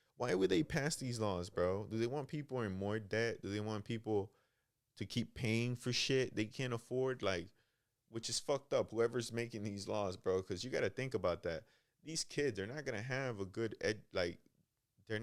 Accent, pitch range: American, 105-130 Hz